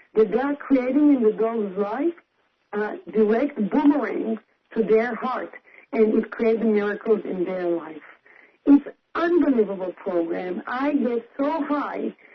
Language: English